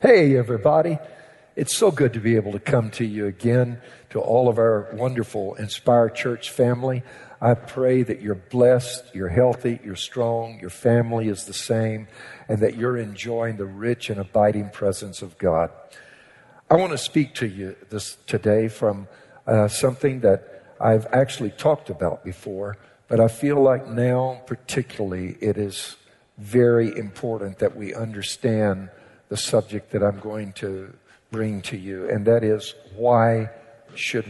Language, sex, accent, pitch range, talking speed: English, male, American, 105-125 Hz, 155 wpm